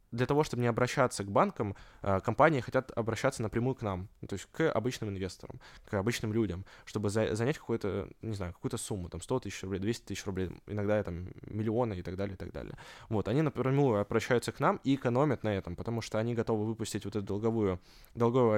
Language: Russian